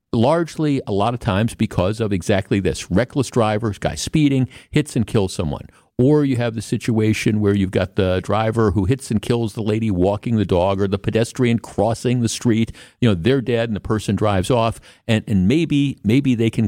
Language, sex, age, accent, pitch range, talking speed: English, male, 50-69, American, 105-130 Hz, 205 wpm